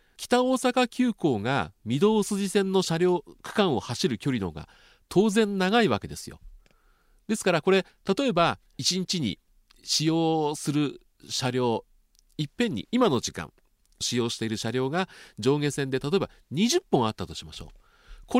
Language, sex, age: Japanese, male, 40-59